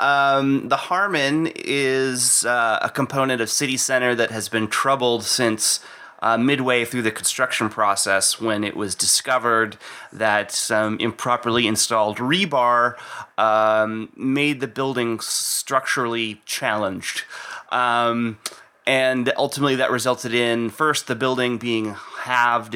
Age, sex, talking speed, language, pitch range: 30-49, male, 125 wpm, English, 110-130 Hz